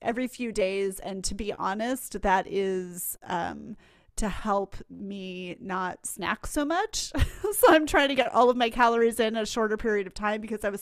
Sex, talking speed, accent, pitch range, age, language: female, 195 wpm, American, 190-225 Hz, 30-49, English